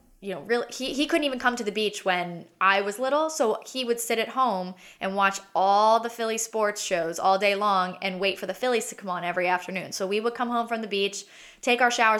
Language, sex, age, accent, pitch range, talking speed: English, female, 10-29, American, 185-220 Hz, 255 wpm